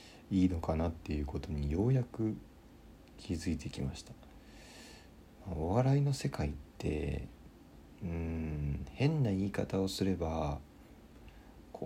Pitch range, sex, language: 80-115 Hz, male, Japanese